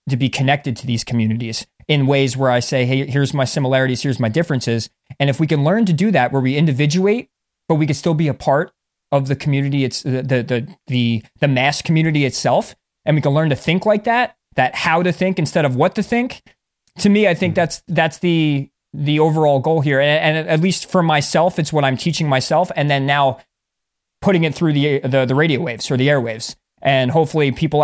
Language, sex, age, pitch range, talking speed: English, male, 20-39, 130-155 Hz, 225 wpm